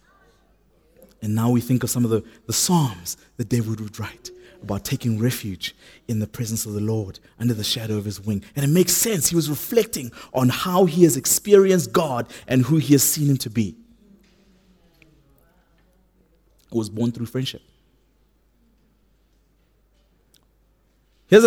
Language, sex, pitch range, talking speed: English, male, 130-215 Hz, 155 wpm